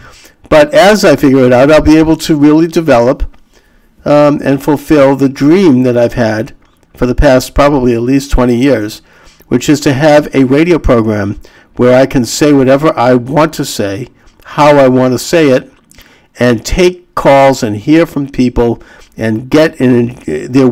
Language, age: English, 50-69